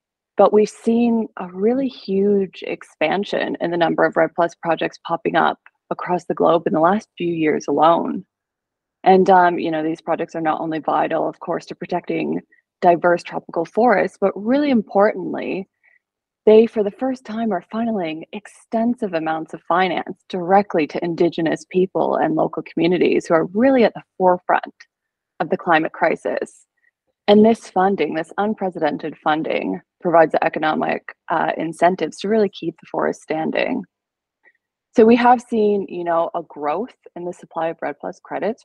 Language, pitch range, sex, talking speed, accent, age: English, 165-215 Hz, female, 165 wpm, American, 20-39